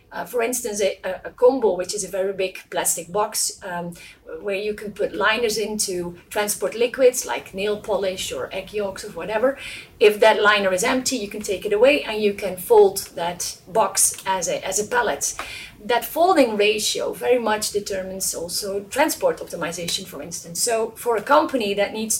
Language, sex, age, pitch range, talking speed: English, female, 30-49, 190-245 Hz, 185 wpm